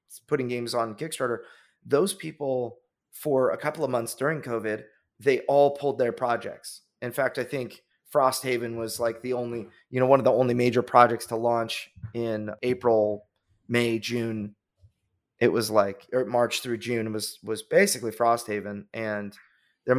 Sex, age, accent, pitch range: male, 30-49, American, 110-125 Hz